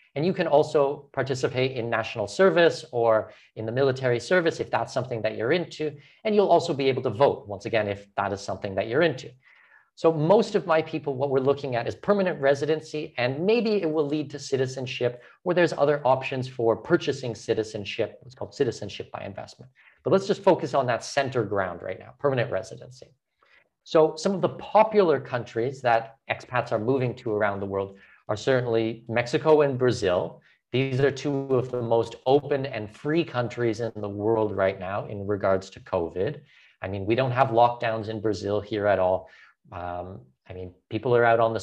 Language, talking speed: English, 195 wpm